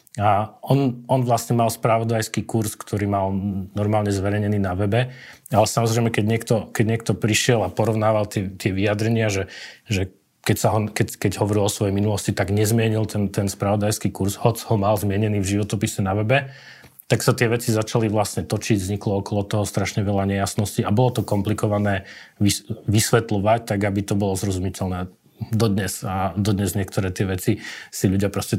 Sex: male